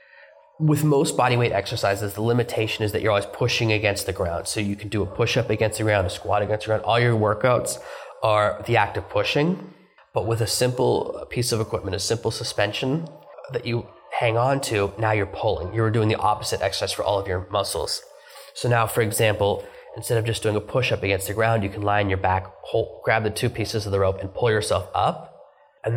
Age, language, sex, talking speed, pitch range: 20-39, English, male, 225 wpm, 100-120 Hz